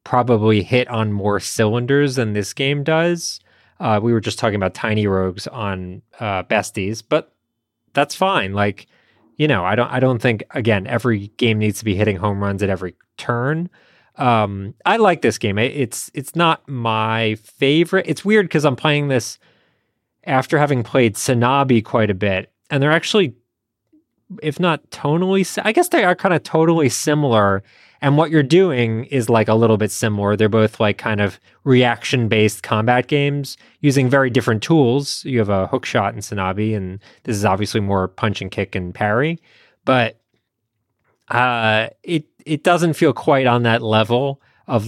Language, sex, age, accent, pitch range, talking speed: English, male, 20-39, American, 105-140 Hz, 175 wpm